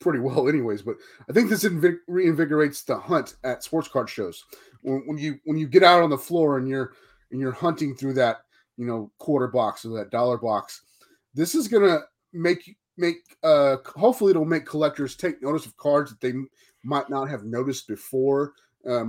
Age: 30-49